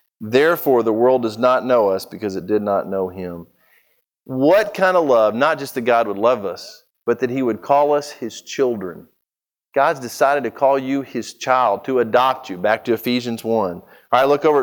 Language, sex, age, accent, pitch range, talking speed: English, male, 40-59, American, 120-165 Hz, 205 wpm